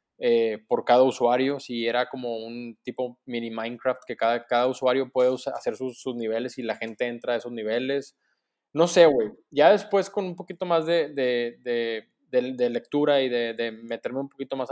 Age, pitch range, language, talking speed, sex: 20-39, 120-155 Hz, Spanish, 210 wpm, male